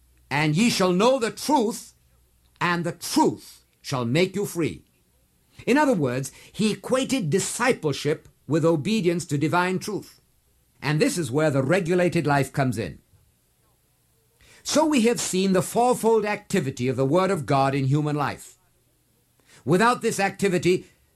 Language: English